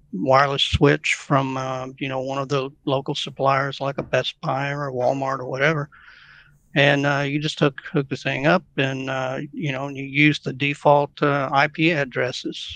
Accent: American